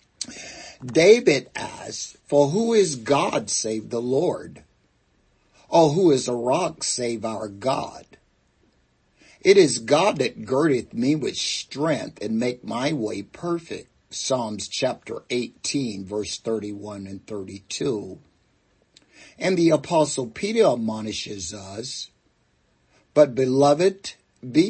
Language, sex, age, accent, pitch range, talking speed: English, male, 60-79, American, 110-145 Hz, 110 wpm